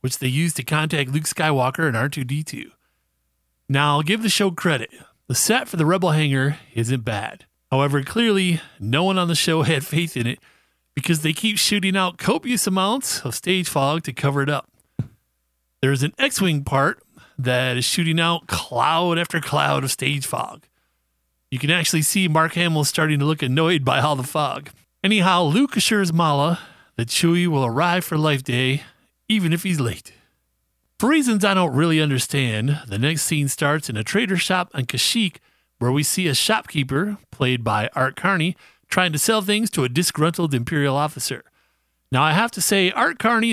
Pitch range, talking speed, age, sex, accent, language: 130-180 Hz, 180 wpm, 30-49, male, American, English